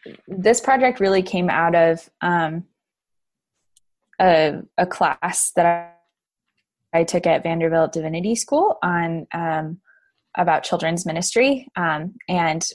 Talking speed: 120 wpm